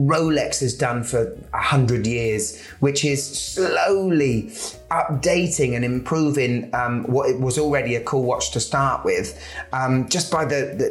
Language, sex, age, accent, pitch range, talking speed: English, male, 30-49, British, 120-140 Hz, 160 wpm